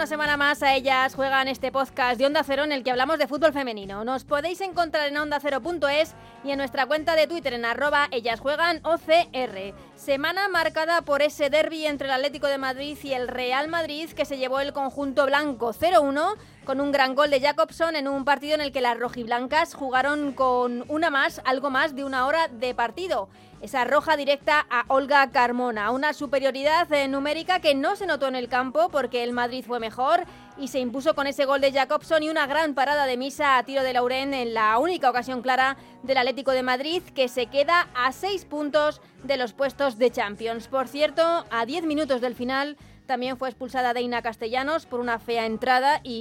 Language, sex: Spanish, female